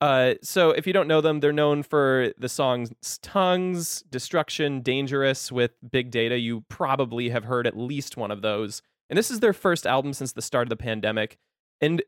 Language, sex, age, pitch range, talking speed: English, male, 20-39, 130-160 Hz, 200 wpm